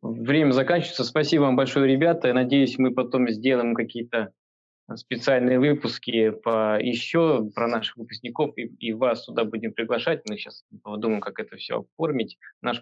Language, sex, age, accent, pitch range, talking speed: Russian, male, 20-39, native, 115-135 Hz, 150 wpm